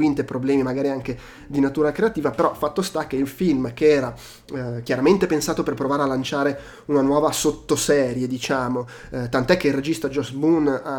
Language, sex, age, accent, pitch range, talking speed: Italian, male, 20-39, native, 125-145 Hz, 180 wpm